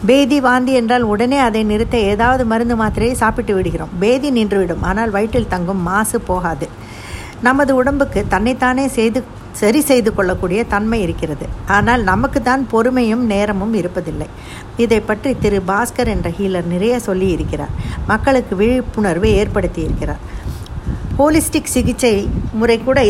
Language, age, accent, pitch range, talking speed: Tamil, 50-69, native, 190-240 Hz, 130 wpm